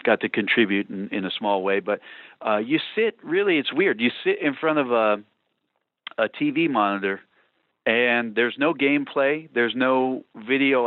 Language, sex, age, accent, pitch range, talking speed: English, male, 40-59, American, 105-130 Hz, 170 wpm